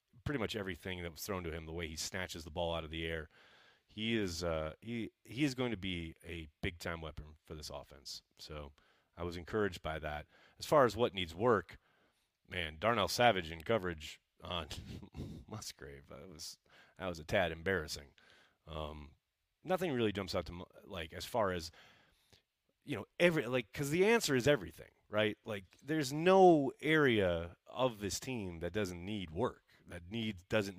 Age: 30-49